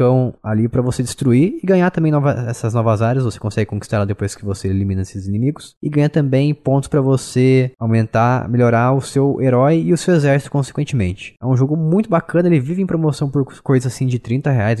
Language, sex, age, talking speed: Portuguese, male, 20-39, 210 wpm